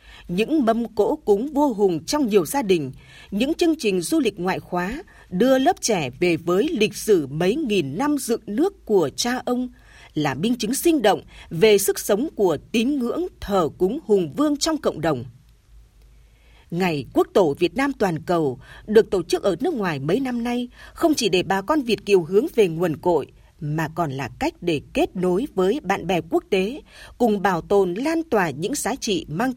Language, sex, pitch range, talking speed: Vietnamese, female, 175-265 Hz, 200 wpm